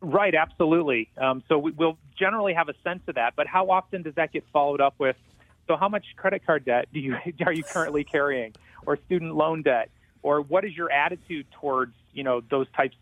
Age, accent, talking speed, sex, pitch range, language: 30-49, American, 210 wpm, male, 130-170 Hz, English